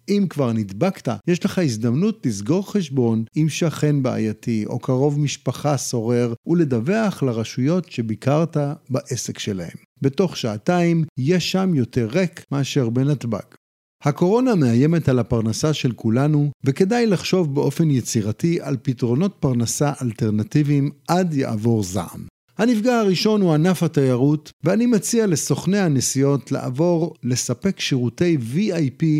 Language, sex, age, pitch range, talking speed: Hebrew, male, 50-69, 130-185 Hz, 120 wpm